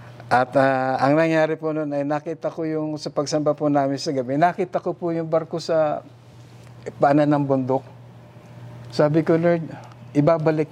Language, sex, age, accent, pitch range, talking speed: Filipino, male, 50-69, native, 120-150 Hz, 170 wpm